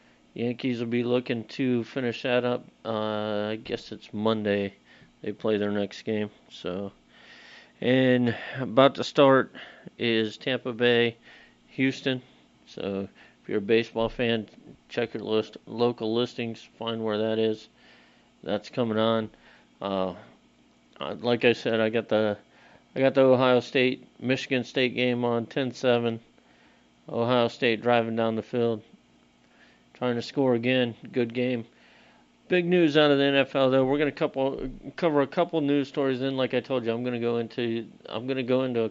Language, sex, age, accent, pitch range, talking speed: English, male, 40-59, American, 110-125 Hz, 155 wpm